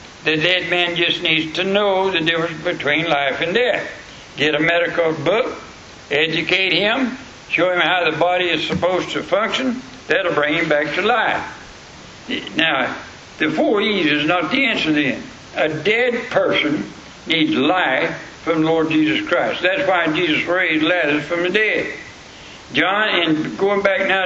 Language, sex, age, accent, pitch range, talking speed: English, male, 60-79, American, 155-195 Hz, 165 wpm